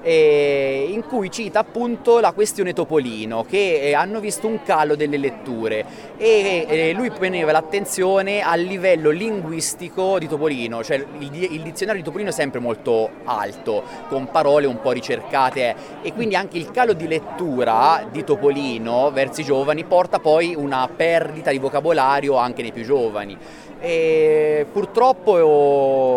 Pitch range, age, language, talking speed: 135-185 Hz, 30-49, Italian, 140 wpm